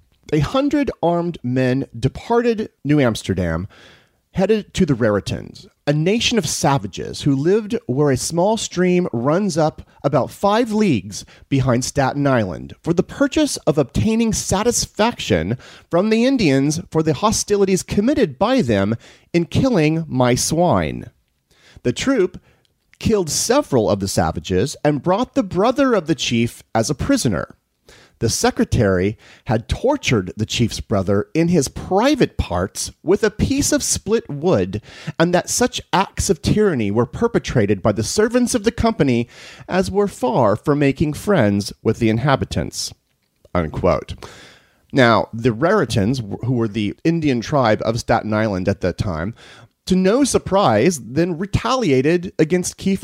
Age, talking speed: 30-49, 145 wpm